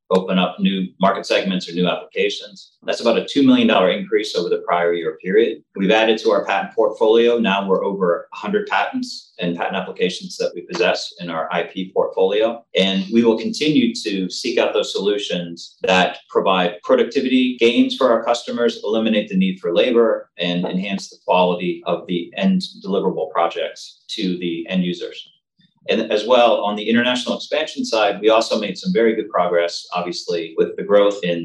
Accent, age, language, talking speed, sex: American, 30-49, English, 180 wpm, male